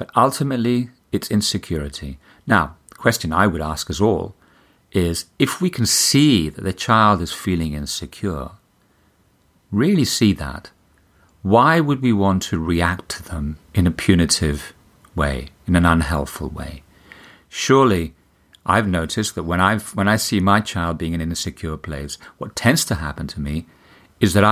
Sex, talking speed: male, 160 wpm